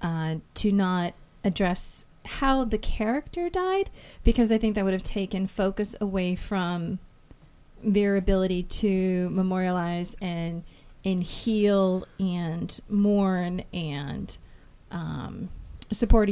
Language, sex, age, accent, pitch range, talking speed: English, female, 30-49, American, 180-220 Hz, 110 wpm